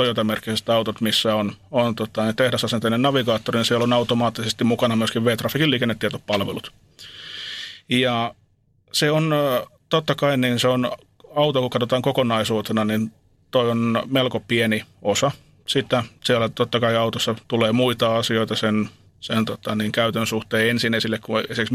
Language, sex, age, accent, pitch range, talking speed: Finnish, male, 30-49, native, 110-125 Hz, 145 wpm